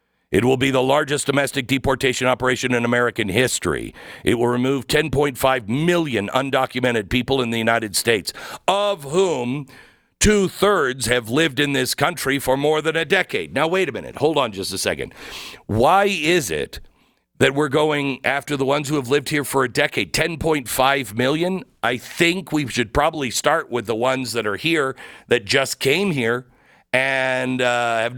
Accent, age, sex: American, 50-69, male